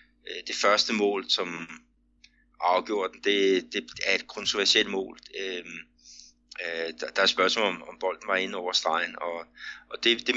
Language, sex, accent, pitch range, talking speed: Danish, male, native, 85-120 Hz, 150 wpm